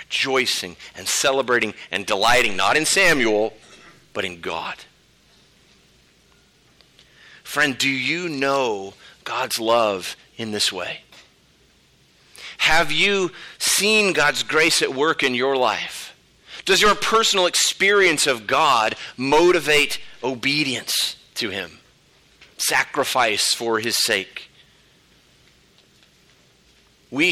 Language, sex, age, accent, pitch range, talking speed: English, male, 40-59, American, 120-170 Hz, 100 wpm